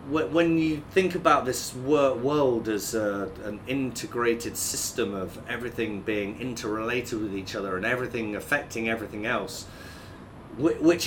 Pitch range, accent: 115-155 Hz, British